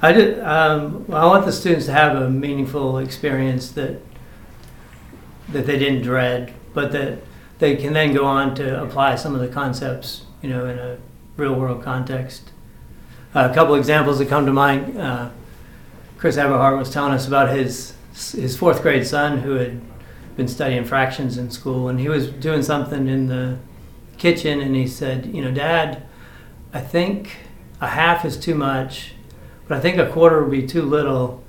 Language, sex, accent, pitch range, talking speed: English, male, American, 130-150 Hz, 180 wpm